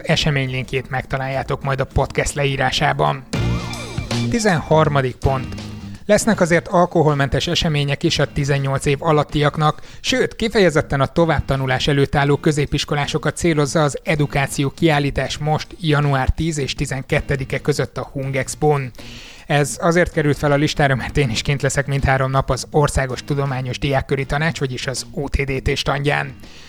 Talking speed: 135 wpm